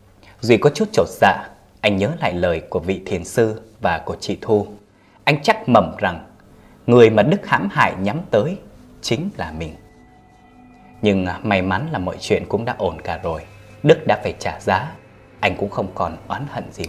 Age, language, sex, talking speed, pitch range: 20-39, Vietnamese, male, 190 wpm, 95-115 Hz